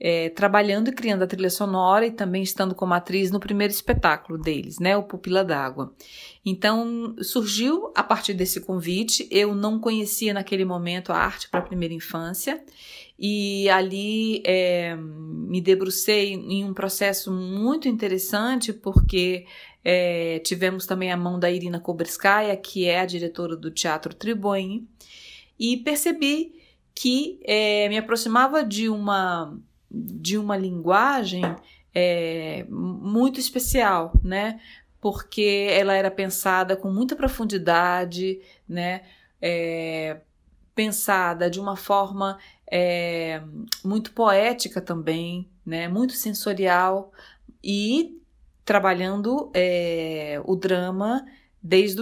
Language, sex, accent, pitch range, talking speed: Portuguese, female, Brazilian, 175-210 Hz, 110 wpm